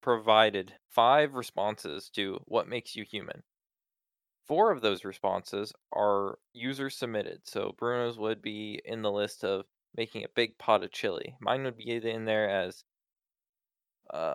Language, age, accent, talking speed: English, 20-39, American, 150 wpm